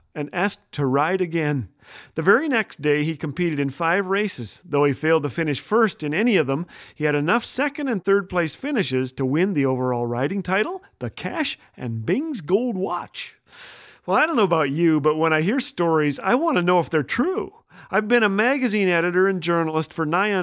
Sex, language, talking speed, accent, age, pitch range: male, English, 210 wpm, American, 40-59, 145-190 Hz